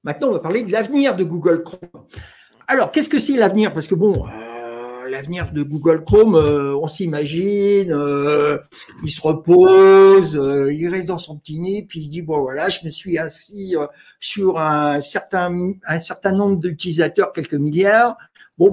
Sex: male